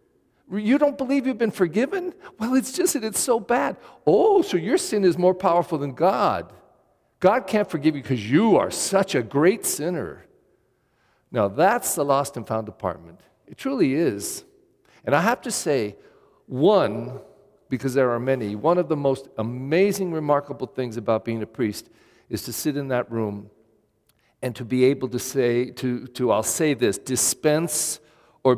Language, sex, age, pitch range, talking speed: English, male, 50-69, 120-170 Hz, 175 wpm